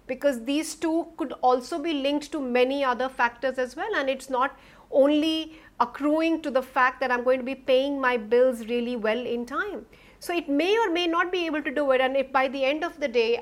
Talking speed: 235 wpm